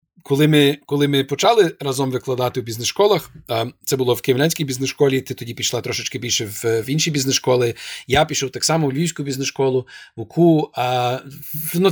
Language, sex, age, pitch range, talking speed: Ukrainian, male, 30-49, 125-150 Hz, 160 wpm